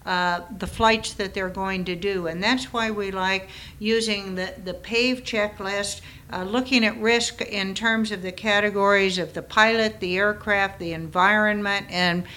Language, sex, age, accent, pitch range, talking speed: English, female, 60-79, American, 185-220 Hz, 170 wpm